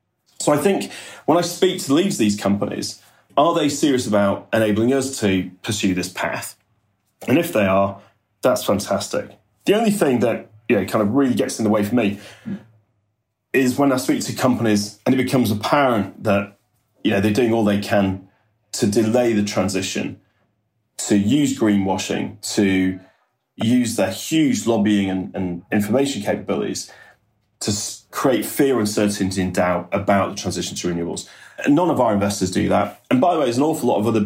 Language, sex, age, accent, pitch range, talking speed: English, male, 30-49, British, 95-110 Hz, 180 wpm